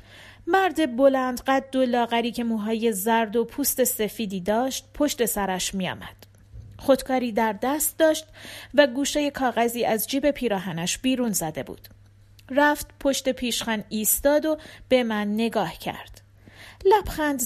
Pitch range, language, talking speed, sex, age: 190-265 Hz, Persian, 130 wpm, female, 40-59